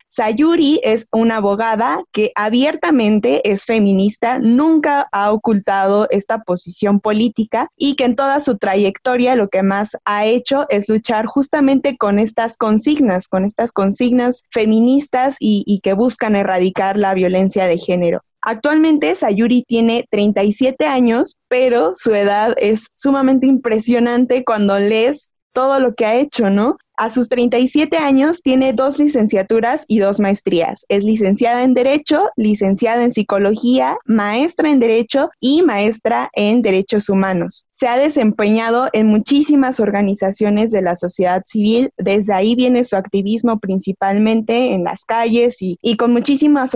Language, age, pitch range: Spanish, 10-29, 205-255 Hz